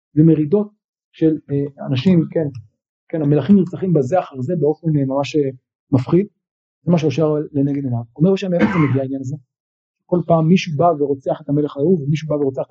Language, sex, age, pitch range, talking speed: Hebrew, male, 40-59, 150-220 Hz, 180 wpm